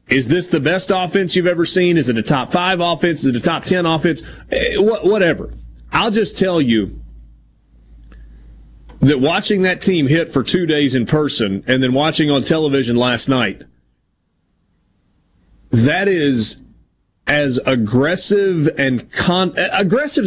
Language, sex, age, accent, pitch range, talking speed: English, male, 30-49, American, 120-175 Hz, 135 wpm